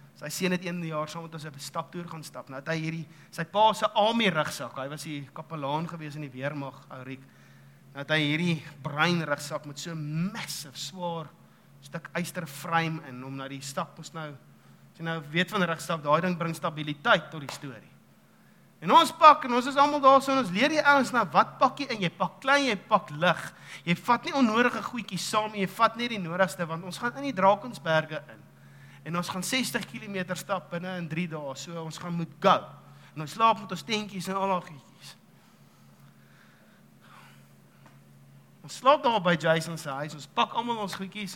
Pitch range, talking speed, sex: 140-190 Hz, 205 wpm, male